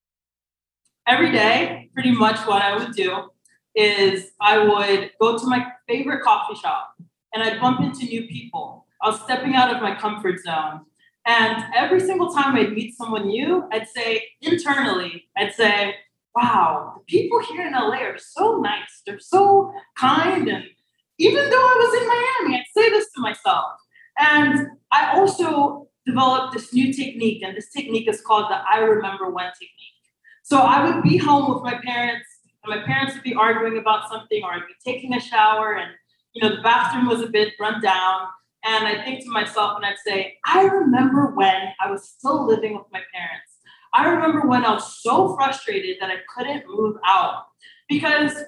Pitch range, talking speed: 210-285 Hz, 185 wpm